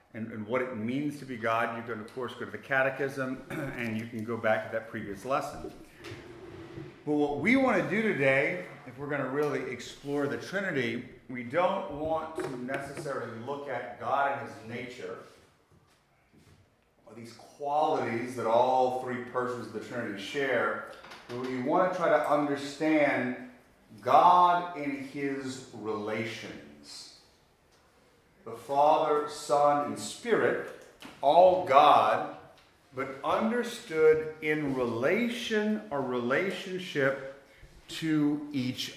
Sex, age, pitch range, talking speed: male, 40-59, 125-160 Hz, 135 wpm